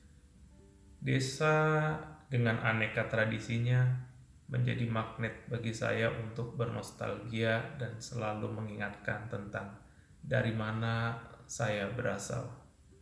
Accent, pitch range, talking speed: native, 105-125 Hz, 85 wpm